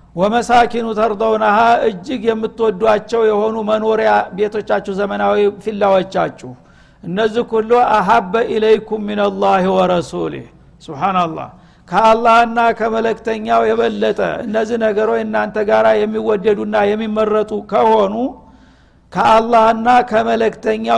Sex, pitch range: male, 205-230 Hz